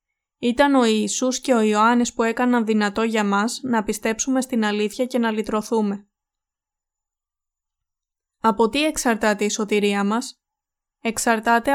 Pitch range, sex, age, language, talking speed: 215-250 Hz, female, 20-39, Greek, 130 wpm